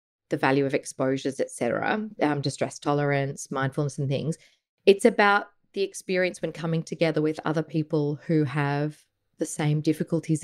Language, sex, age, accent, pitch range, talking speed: English, female, 30-49, Australian, 150-175 Hz, 155 wpm